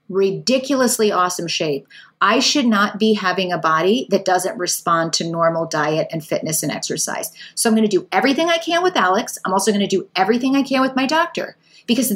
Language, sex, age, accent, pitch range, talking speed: English, female, 30-49, American, 185-230 Hz, 205 wpm